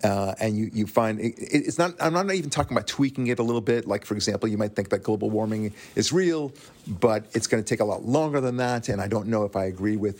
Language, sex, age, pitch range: English, male, 50-69, 100-130 Hz